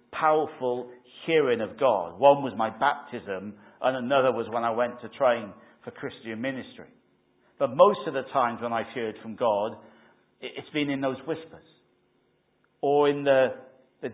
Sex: male